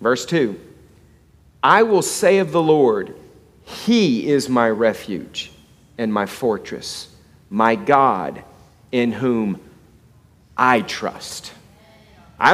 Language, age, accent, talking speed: English, 40-59, American, 105 wpm